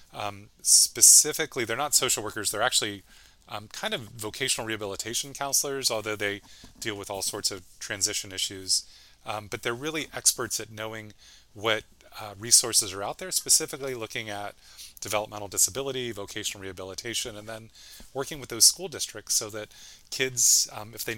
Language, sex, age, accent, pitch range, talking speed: English, male, 30-49, American, 100-120 Hz, 160 wpm